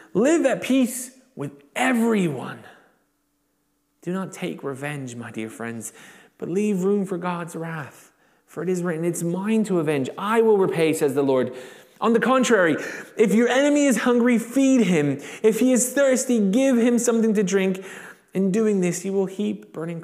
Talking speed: 175 wpm